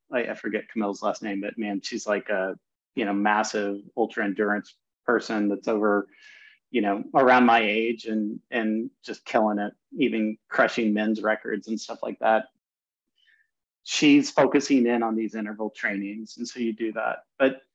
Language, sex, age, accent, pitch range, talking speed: English, male, 30-49, American, 105-125 Hz, 165 wpm